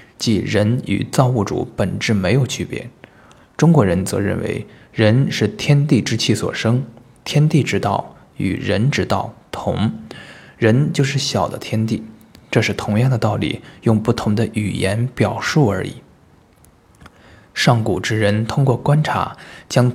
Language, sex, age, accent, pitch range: Chinese, male, 20-39, native, 105-125 Hz